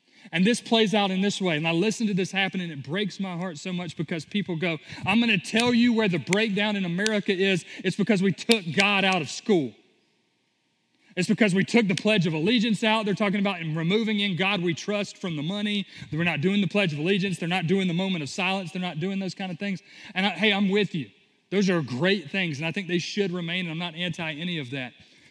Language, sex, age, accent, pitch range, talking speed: English, male, 30-49, American, 165-200 Hz, 255 wpm